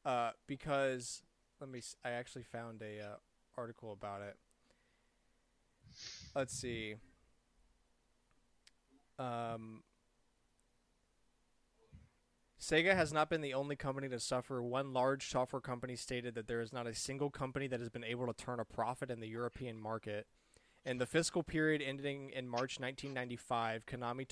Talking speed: 145 wpm